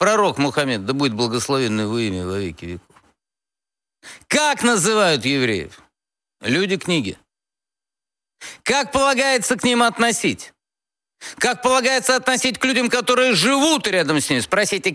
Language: Russian